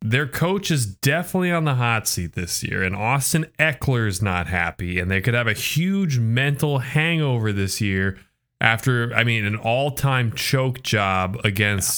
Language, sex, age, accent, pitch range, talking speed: English, male, 30-49, American, 110-145 Hz, 170 wpm